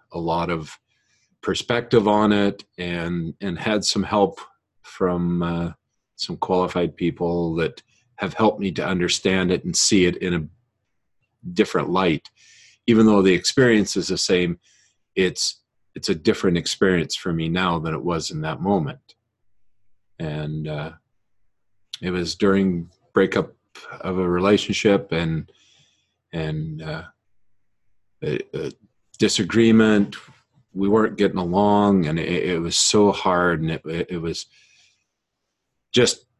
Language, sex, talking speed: English, male, 135 wpm